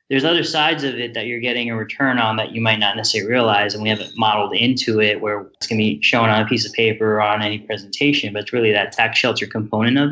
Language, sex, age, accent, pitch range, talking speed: English, male, 20-39, American, 110-120 Hz, 275 wpm